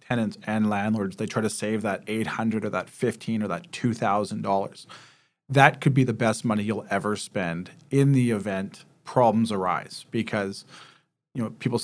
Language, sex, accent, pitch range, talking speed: English, male, American, 110-130 Hz, 175 wpm